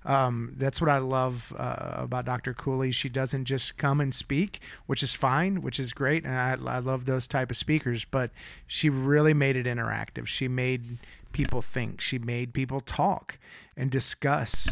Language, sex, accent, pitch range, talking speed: English, male, American, 120-140 Hz, 185 wpm